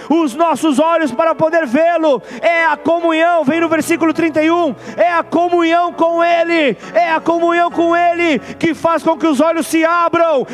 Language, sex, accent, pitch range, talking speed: Portuguese, male, Brazilian, 300-330 Hz, 175 wpm